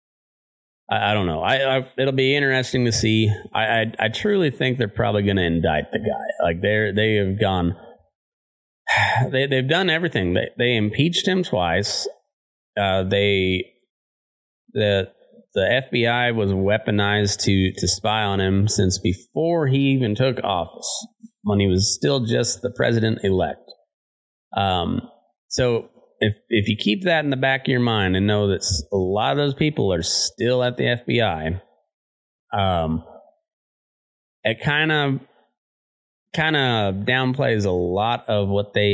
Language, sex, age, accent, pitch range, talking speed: English, male, 30-49, American, 95-130 Hz, 155 wpm